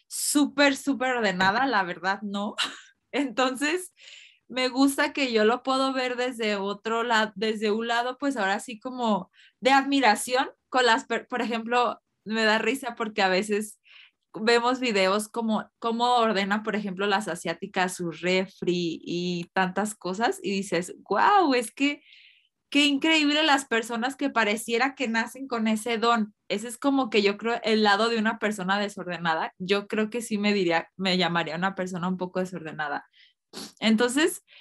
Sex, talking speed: female, 160 wpm